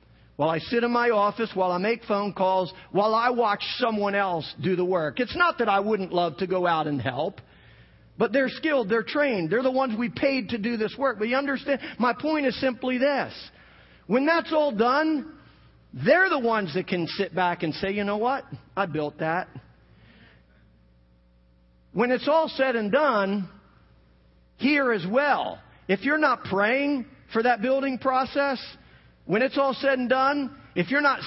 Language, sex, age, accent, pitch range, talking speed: English, male, 50-69, American, 210-320 Hz, 185 wpm